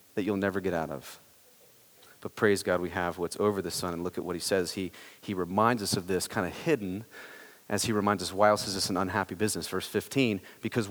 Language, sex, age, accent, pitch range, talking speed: English, male, 30-49, American, 105-170 Hz, 240 wpm